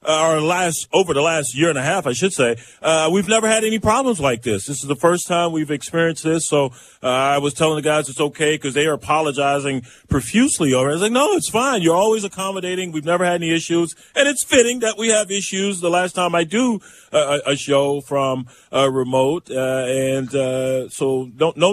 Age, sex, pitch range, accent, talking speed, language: 30-49, male, 130-165 Hz, American, 225 wpm, English